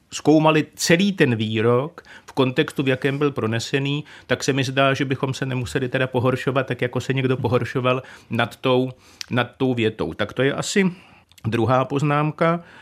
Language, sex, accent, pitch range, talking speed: Czech, male, native, 125-150 Hz, 165 wpm